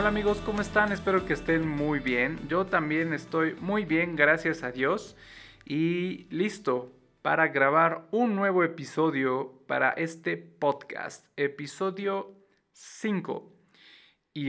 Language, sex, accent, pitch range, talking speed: Spanish, male, Mexican, 140-190 Hz, 125 wpm